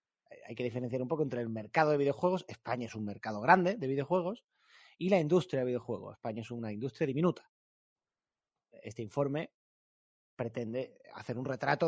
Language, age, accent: Spanish, 30-49, Spanish